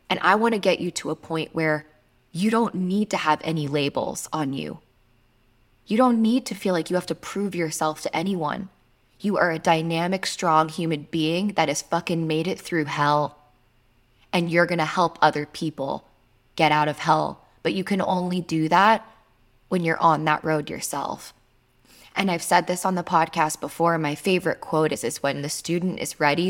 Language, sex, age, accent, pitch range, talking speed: English, female, 20-39, American, 145-180 Hz, 195 wpm